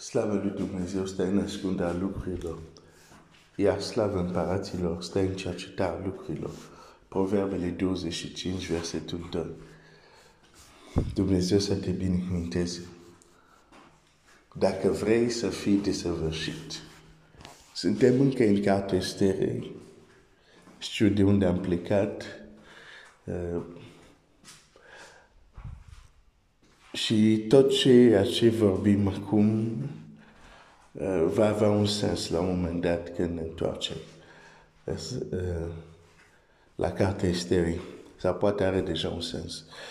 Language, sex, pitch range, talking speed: Romanian, male, 85-100 Hz, 105 wpm